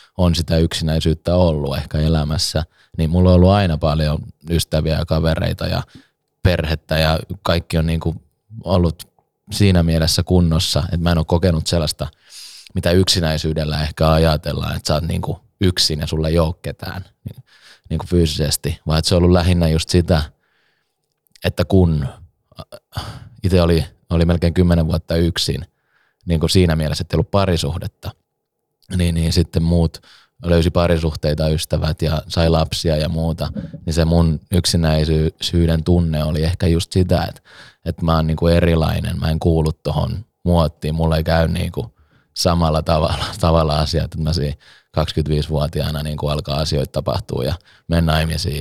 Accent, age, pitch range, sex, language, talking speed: native, 20-39, 80-90 Hz, male, Finnish, 155 wpm